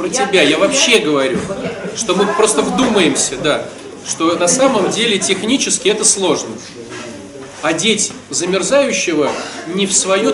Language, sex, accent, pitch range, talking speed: Russian, male, native, 175-225 Hz, 130 wpm